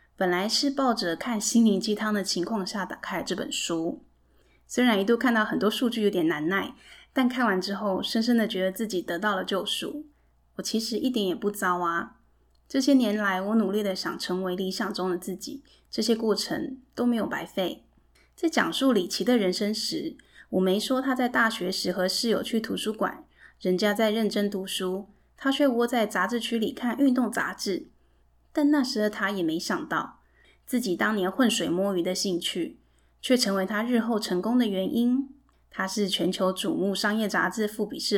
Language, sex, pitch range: Chinese, female, 185-245 Hz